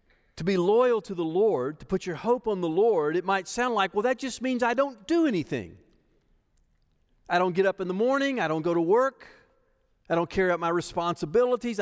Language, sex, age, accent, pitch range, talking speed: English, male, 50-69, American, 150-245 Hz, 220 wpm